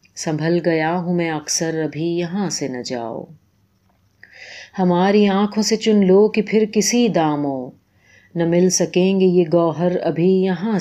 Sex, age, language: female, 30-49, Urdu